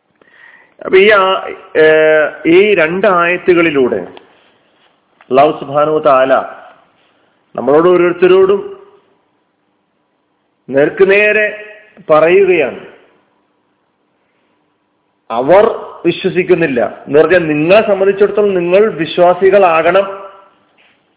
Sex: male